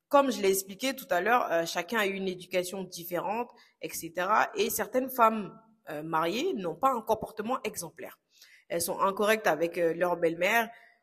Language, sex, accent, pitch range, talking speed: French, female, French, 175-220 Hz, 165 wpm